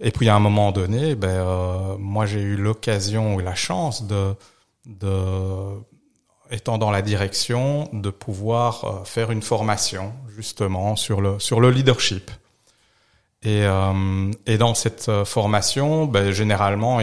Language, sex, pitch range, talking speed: French, male, 100-125 Hz, 145 wpm